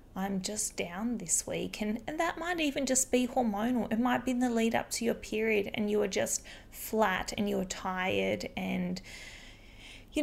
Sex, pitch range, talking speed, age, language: female, 190-240 Hz, 195 wpm, 20-39, English